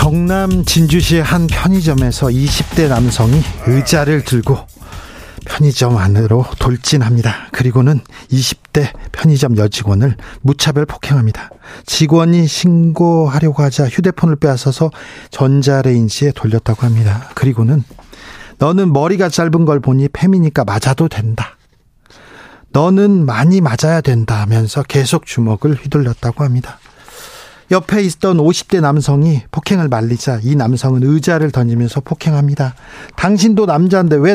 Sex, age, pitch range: male, 40-59, 125-165 Hz